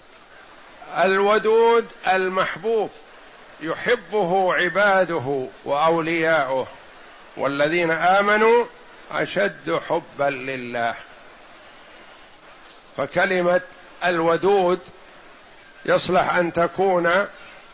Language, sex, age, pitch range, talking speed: Arabic, male, 50-69, 170-200 Hz, 50 wpm